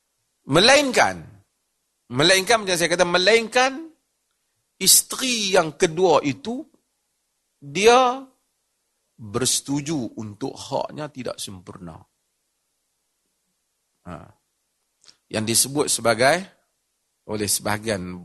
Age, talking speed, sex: 40-59, 70 wpm, male